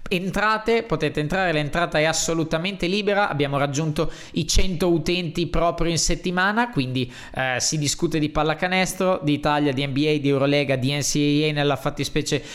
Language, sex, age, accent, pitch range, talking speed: Italian, male, 20-39, native, 135-175 Hz, 150 wpm